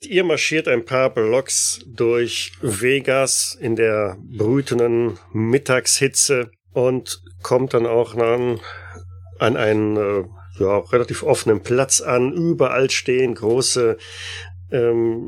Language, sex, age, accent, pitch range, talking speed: German, male, 40-59, German, 110-145 Hz, 115 wpm